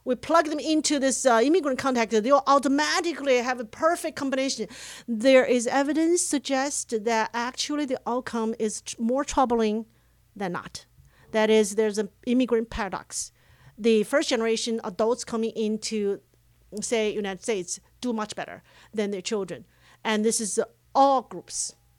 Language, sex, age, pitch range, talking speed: English, female, 40-59, 210-260 Hz, 150 wpm